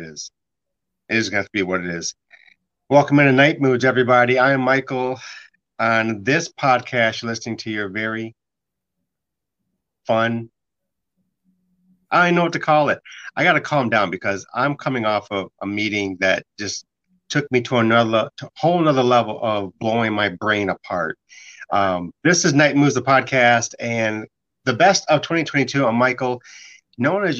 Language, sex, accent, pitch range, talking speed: English, male, American, 110-145 Hz, 160 wpm